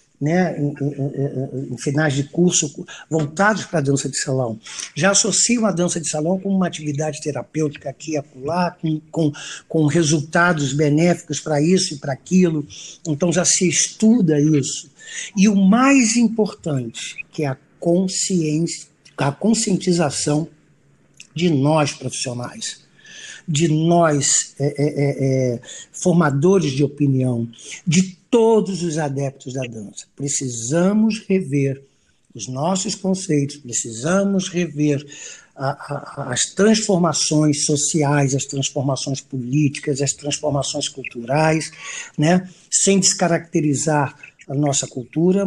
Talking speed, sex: 115 wpm, male